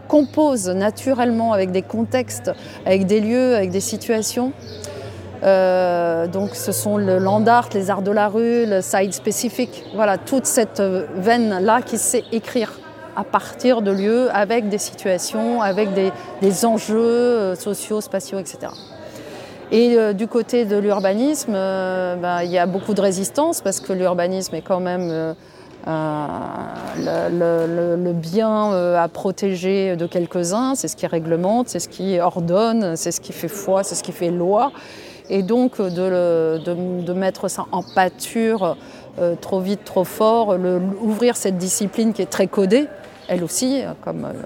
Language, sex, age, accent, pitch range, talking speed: French, female, 30-49, French, 180-225 Hz, 165 wpm